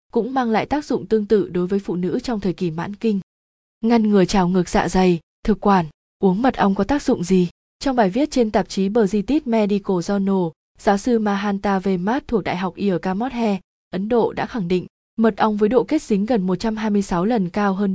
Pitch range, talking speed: 185-225 Hz, 215 wpm